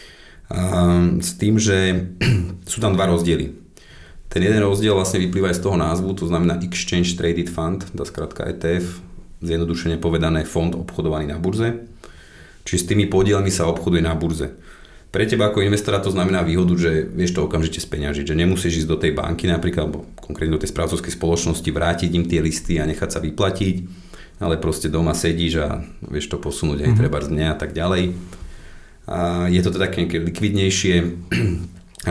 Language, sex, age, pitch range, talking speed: Slovak, male, 30-49, 80-95 Hz, 170 wpm